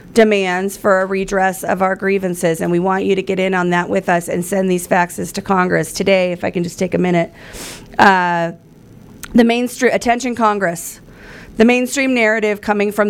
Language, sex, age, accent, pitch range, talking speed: English, female, 40-59, American, 185-225 Hz, 190 wpm